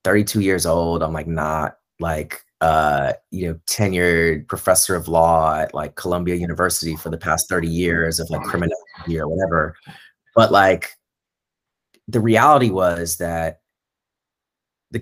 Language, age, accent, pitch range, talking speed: English, 30-49, American, 80-105 Hz, 140 wpm